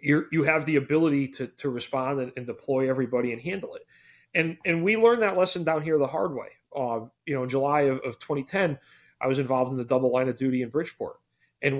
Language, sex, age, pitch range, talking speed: English, male, 40-59, 125-155 Hz, 235 wpm